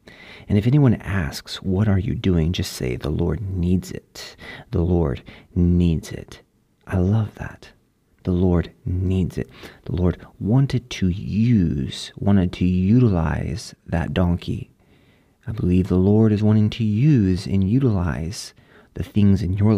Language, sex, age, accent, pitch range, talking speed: English, male, 30-49, American, 85-110 Hz, 150 wpm